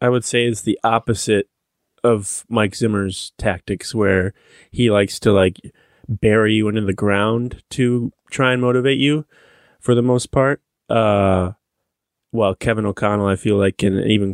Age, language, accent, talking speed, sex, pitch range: 20-39, English, American, 160 wpm, male, 100-115 Hz